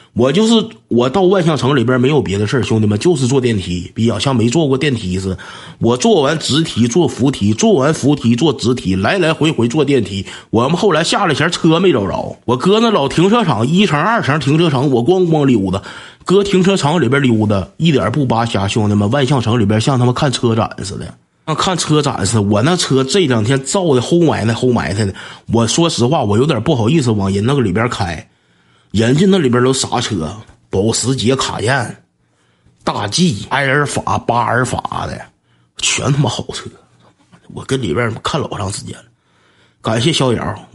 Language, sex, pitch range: Chinese, male, 105-145 Hz